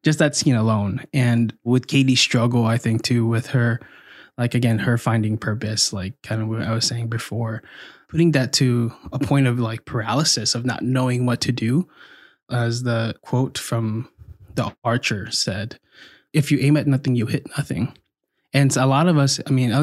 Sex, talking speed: male, 190 wpm